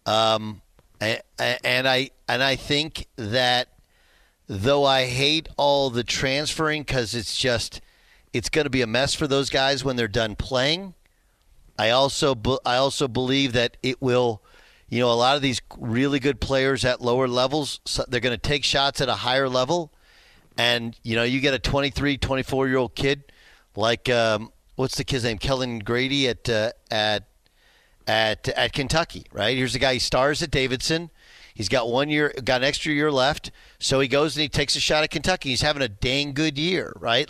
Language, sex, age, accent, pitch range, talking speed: English, male, 40-59, American, 120-145 Hz, 190 wpm